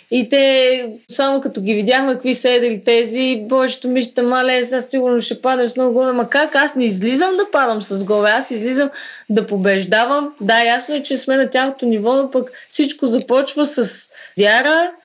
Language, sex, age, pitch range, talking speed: Bulgarian, female, 20-39, 235-270 Hz, 185 wpm